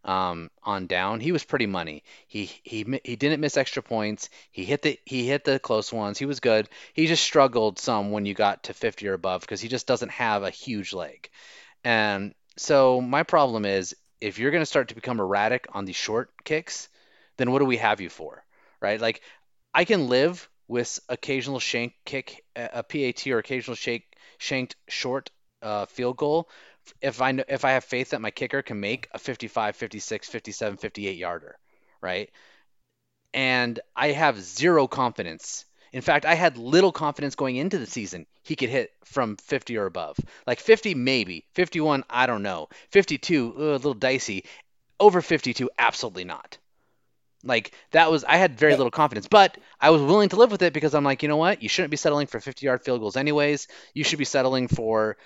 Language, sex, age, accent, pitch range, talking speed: English, male, 30-49, American, 115-155 Hz, 195 wpm